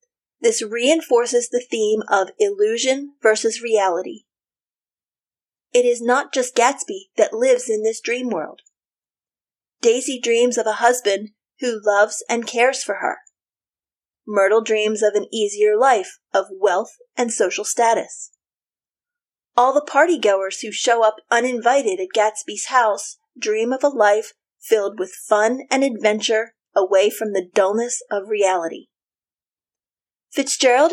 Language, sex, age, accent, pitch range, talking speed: English, female, 30-49, American, 210-275 Hz, 130 wpm